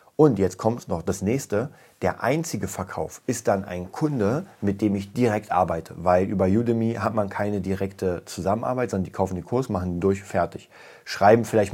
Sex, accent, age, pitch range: male, German, 40-59, 95-115 Hz